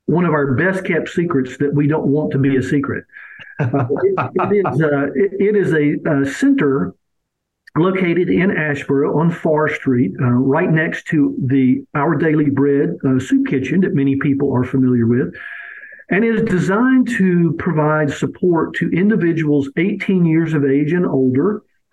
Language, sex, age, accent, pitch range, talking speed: English, male, 50-69, American, 140-190 Hz, 160 wpm